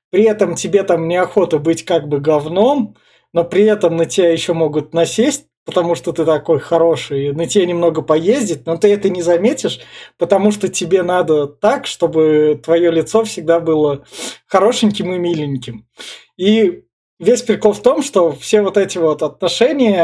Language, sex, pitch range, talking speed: Russian, male, 160-205 Hz, 165 wpm